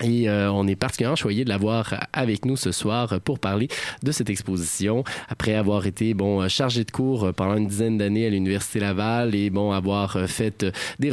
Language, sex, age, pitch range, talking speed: French, male, 20-39, 100-120 Hz, 195 wpm